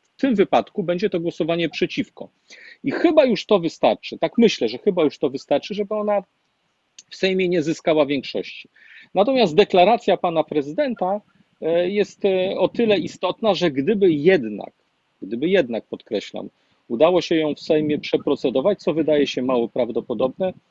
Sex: male